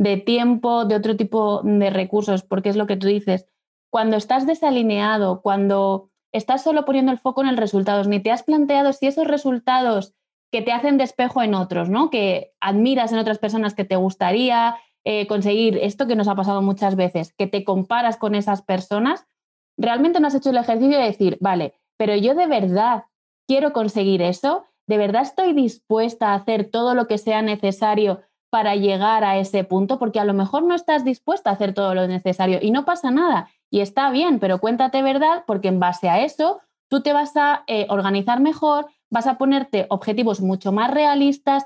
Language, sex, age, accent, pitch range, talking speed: Spanish, female, 20-39, Spanish, 200-275 Hz, 195 wpm